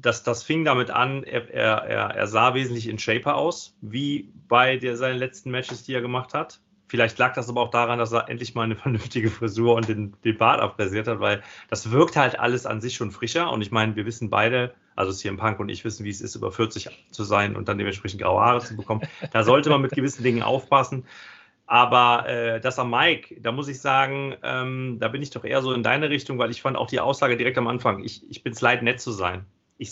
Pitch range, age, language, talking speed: 110-125 Hz, 30-49, German, 245 wpm